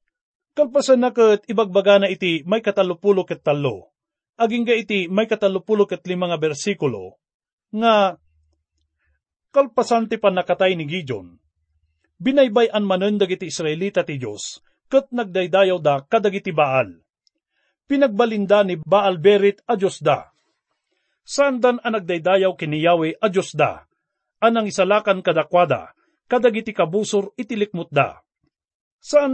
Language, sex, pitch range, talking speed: English, male, 170-235 Hz, 105 wpm